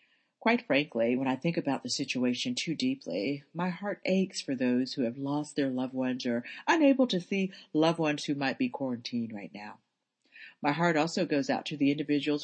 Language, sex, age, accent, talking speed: English, female, 40-59, American, 200 wpm